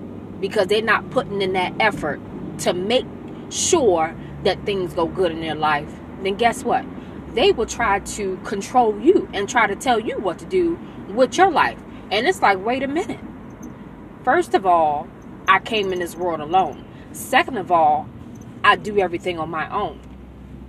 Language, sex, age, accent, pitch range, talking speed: English, female, 20-39, American, 165-235 Hz, 175 wpm